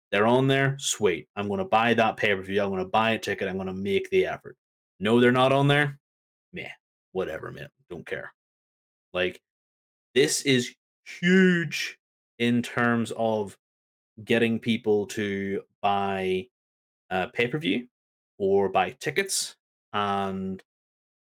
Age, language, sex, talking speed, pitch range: 30-49, English, male, 130 wpm, 100-125 Hz